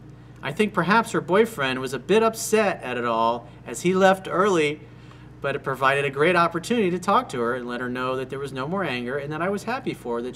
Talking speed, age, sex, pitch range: 255 wpm, 40-59, male, 115-180 Hz